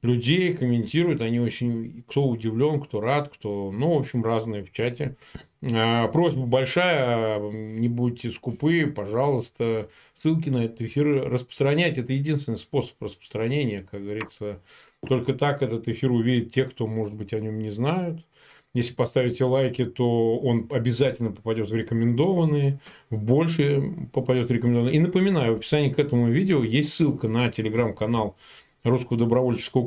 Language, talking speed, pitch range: Russian, 145 wpm, 115-150 Hz